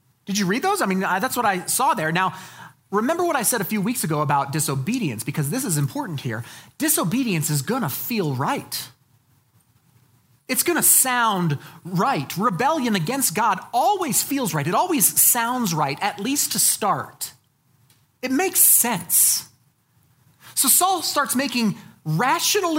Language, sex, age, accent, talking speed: English, male, 30-49, American, 160 wpm